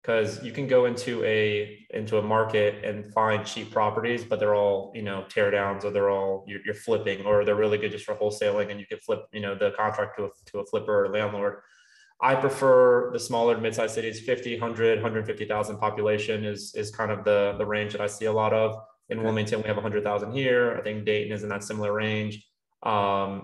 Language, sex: English, male